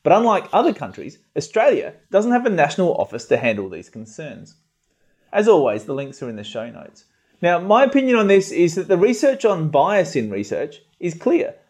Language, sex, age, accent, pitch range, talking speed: English, male, 30-49, Australian, 145-210 Hz, 195 wpm